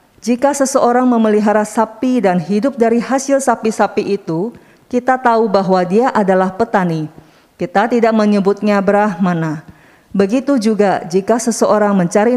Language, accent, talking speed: Indonesian, native, 120 wpm